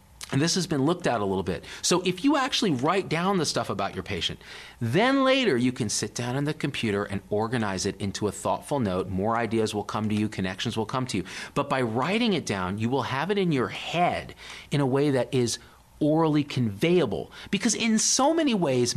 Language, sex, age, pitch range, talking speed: English, male, 40-59, 110-170 Hz, 225 wpm